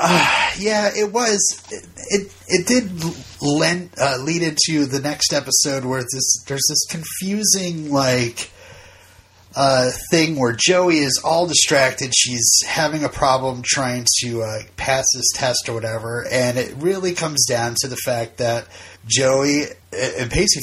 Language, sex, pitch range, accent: English, male, 125-180 Hz, American